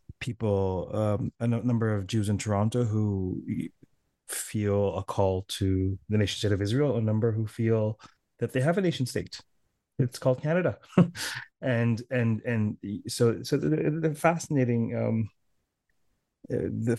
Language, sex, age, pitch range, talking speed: English, male, 30-49, 95-120 Hz, 140 wpm